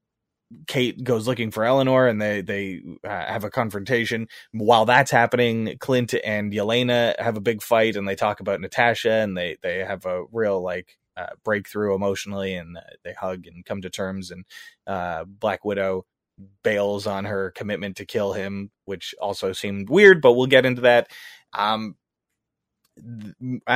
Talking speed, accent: 165 wpm, American